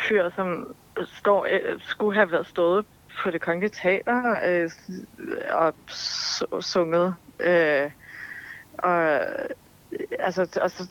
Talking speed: 90 wpm